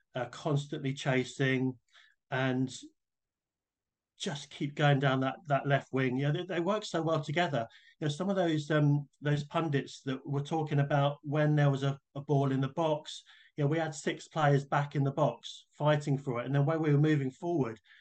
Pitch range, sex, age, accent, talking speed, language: 130-150 Hz, male, 30-49, British, 205 wpm, English